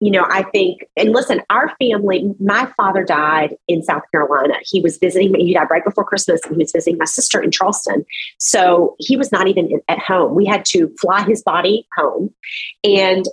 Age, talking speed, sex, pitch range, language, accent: 40-59, 205 wpm, female, 180-245 Hz, English, American